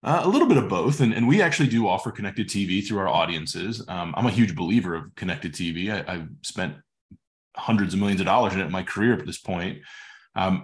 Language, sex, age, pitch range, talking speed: English, male, 20-39, 95-120 Hz, 235 wpm